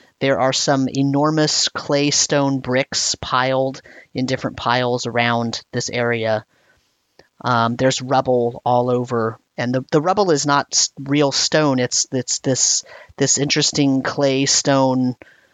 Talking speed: 130 wpm